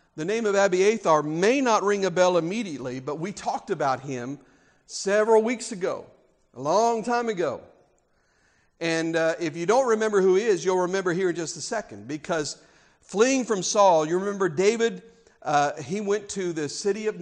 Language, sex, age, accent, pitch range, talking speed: English, male, 50-69, American, 165-225 Hz, 180 wpm